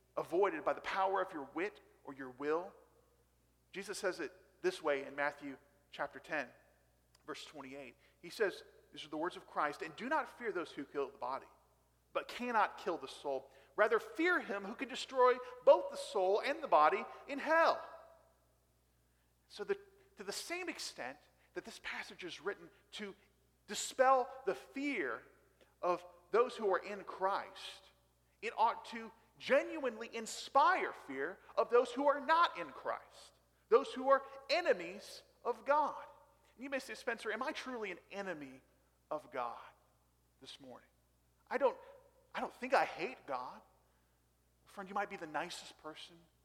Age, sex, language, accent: 40-59, male, English, American